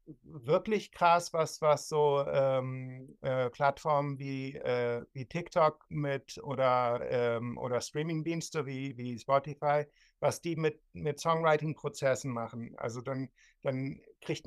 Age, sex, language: 60-79, male, German